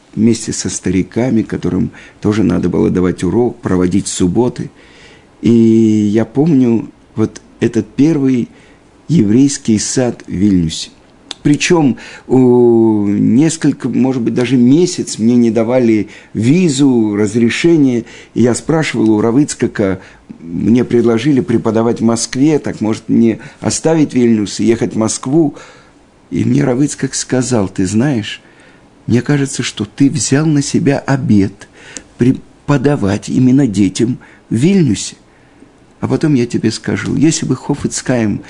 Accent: native